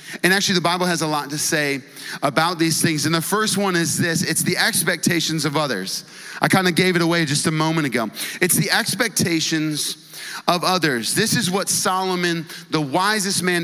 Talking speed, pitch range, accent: 200 wpm, 135-175 Hz, American